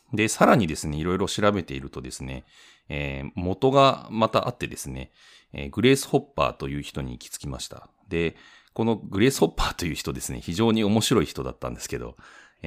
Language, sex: Japanese, male